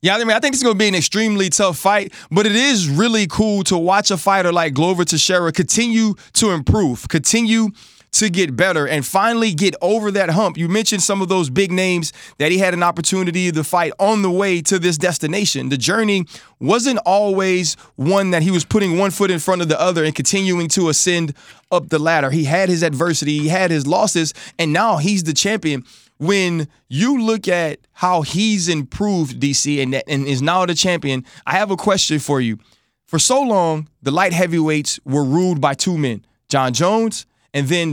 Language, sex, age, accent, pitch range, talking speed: English, male, 20-39, American, 155-195 Hz, 200 wpm